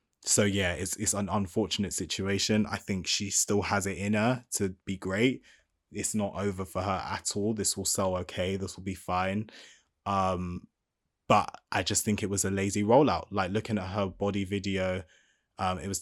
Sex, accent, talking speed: male, British, 195 wpm